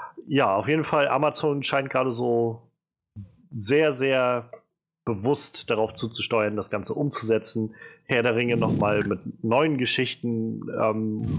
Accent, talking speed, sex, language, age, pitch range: German, 125 wpm, male, German, 30-49, 110-145 Hz